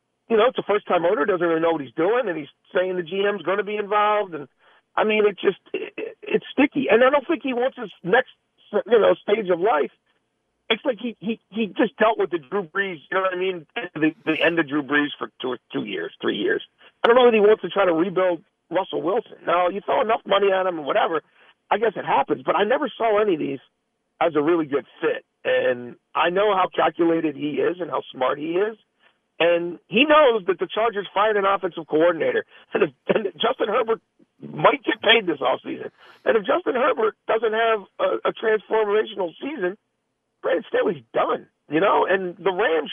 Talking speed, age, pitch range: 220 wpm, 50-69, 170-275 Hz